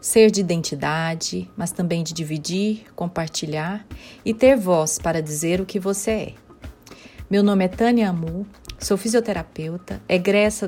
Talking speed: 140 wpm